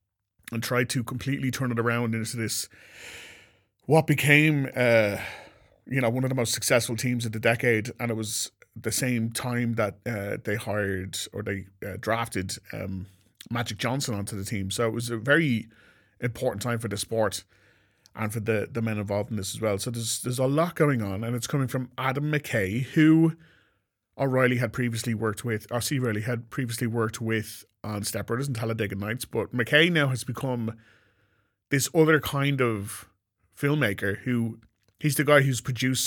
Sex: male